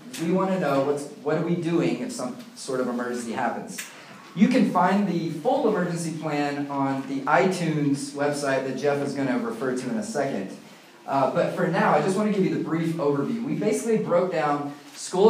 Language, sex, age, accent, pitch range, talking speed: English, male, 30-49, American, 145-180 Hz, 210 wpm